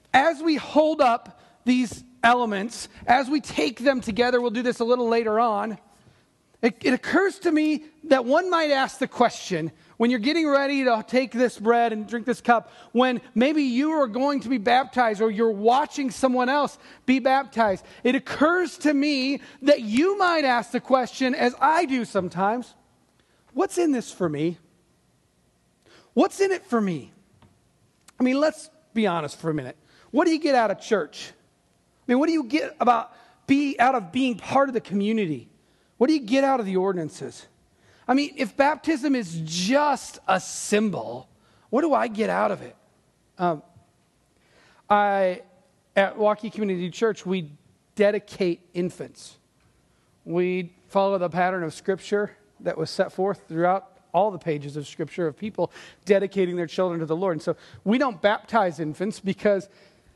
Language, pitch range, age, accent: English, 190-270 Hz, 40-59, American